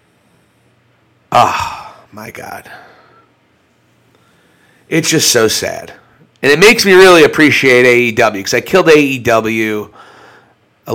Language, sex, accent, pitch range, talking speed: English, male, American, 115-150 Hz, 105 wpm